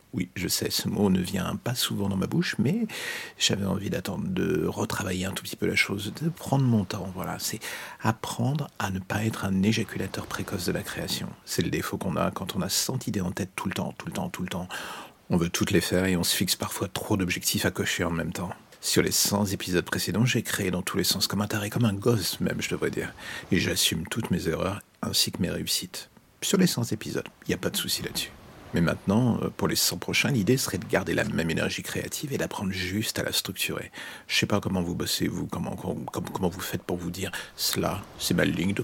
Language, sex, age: French, male, 50-69